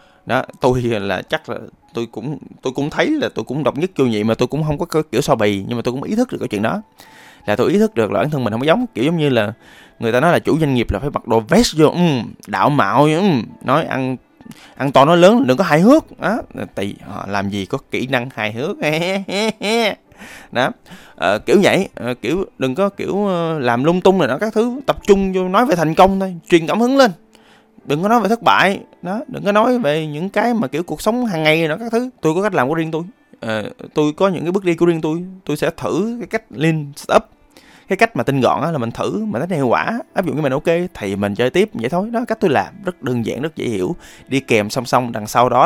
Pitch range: 125-195 Hz